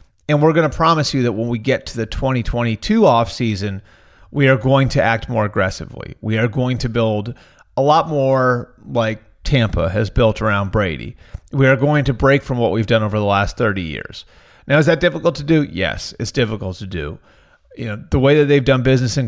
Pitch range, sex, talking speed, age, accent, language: 110-140 Hz, male, 215 wpm, 30-49, American, English